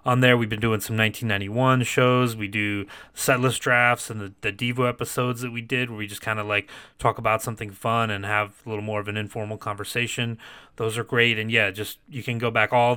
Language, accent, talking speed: English, American, 240 wpm